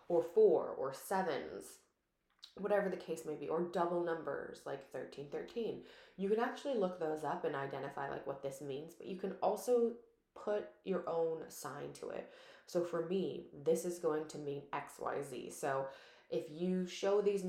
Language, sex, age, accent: English, female, 20-39, American